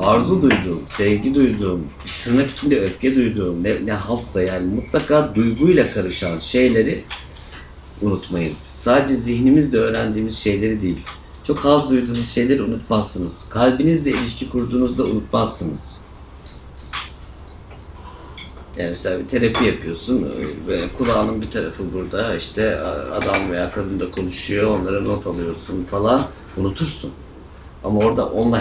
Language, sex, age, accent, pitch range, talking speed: Turkish, male, 60-79, native, 80-115 Hz, 115 wpm